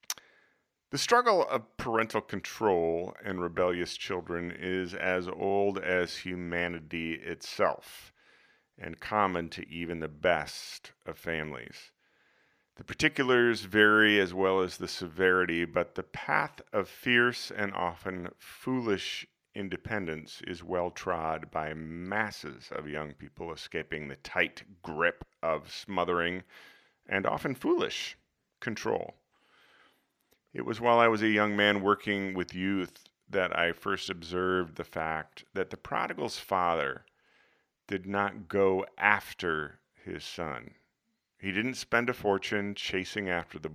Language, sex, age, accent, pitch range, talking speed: English, male, 40-59, American, 85-100 Hz, 125 wpm